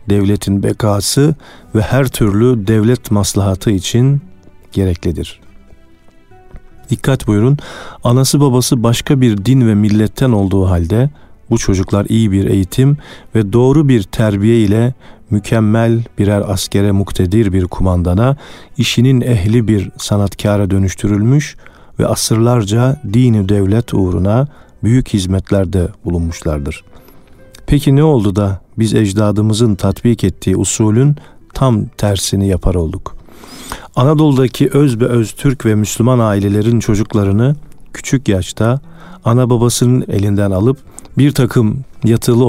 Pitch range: 95-125 Hz